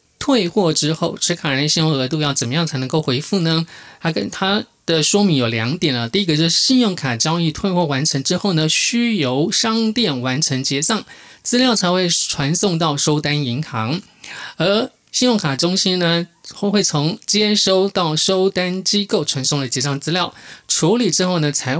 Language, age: Chinese, 20-39